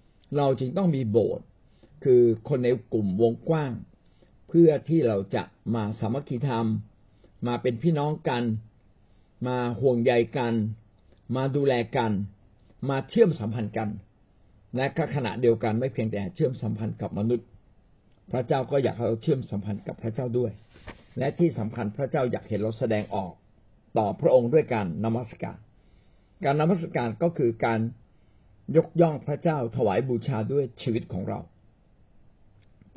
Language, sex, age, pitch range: Thai, male, 60-79, 105-145 Hz